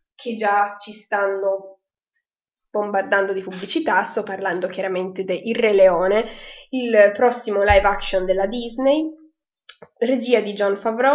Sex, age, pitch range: female, 20-39, 195-235 Hz